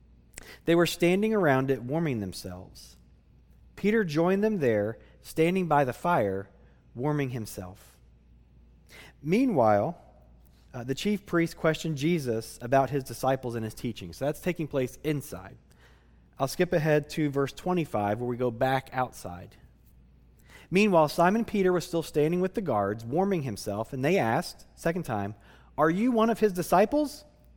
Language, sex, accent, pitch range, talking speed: English, male, American, 110-180 Hz, 150 wpm